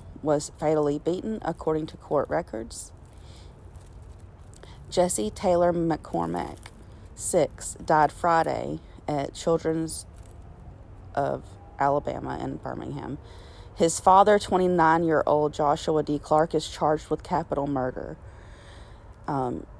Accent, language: American, English